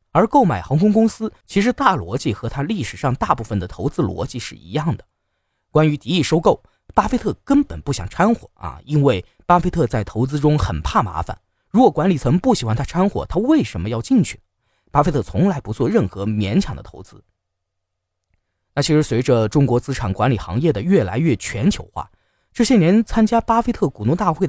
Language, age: Chinese, 20-39